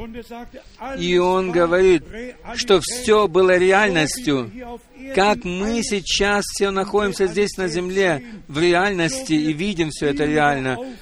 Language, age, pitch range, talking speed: Russian, 50-69, 145-205 Hz, 120 wpm